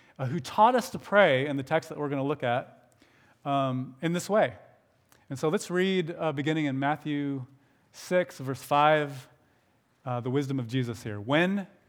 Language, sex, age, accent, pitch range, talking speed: English, male, 30-49, American, 120-150 Hz, 185 wpm